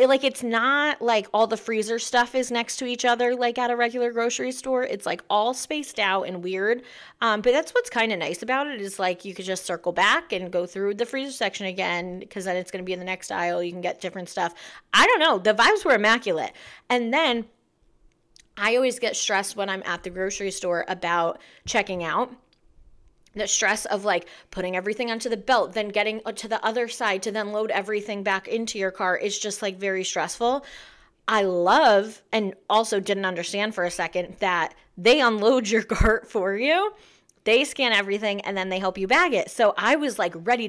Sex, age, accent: female, 30-49, American